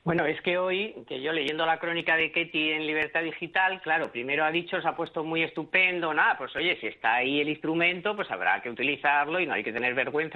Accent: Spanish